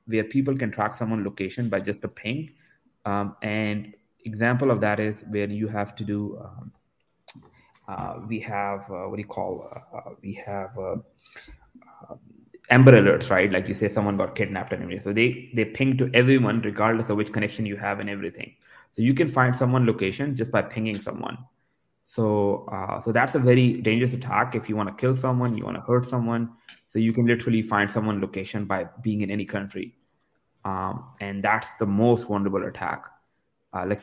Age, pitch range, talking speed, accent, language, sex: 20-39, 105-120 Hz, 190 wpm, Indian, English, male